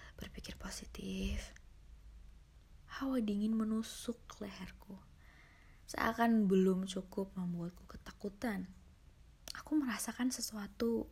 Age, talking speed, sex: 20-39, 75 wpm, female